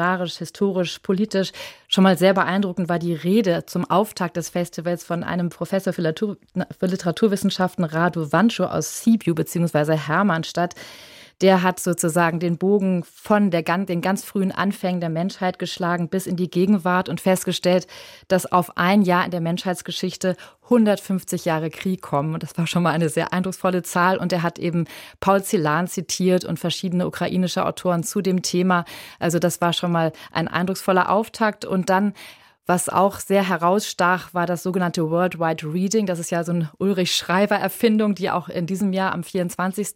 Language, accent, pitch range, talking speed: German, German, 170-190 Hz, 165 wpm